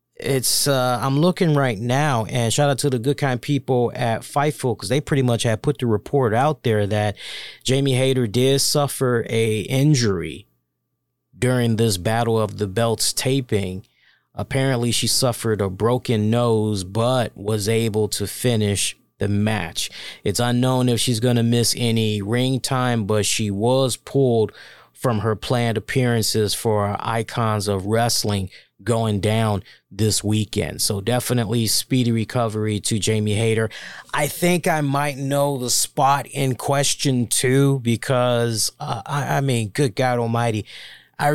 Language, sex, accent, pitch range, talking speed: English, male, American, 110-140 Hz, 150 wpm